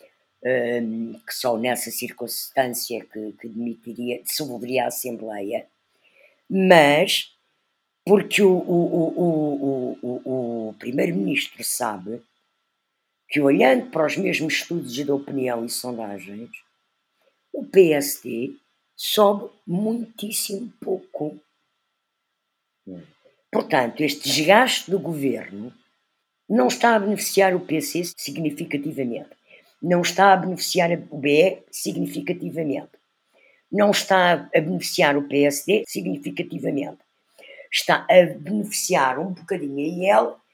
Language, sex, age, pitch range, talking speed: Portuguese, female, 50-69, 135-195 Hz, 100 wpm